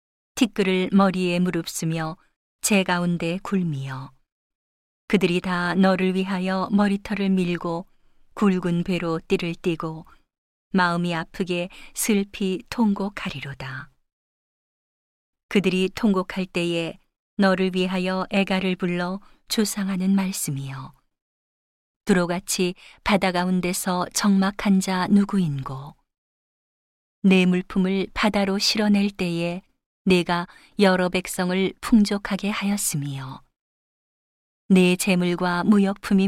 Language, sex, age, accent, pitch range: Korean, female, 40-59, native, 175-200 Hz